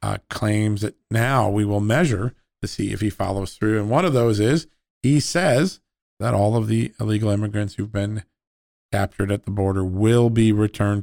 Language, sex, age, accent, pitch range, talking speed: English, male, 50-69, American, 105-125 Hz, 190 wpm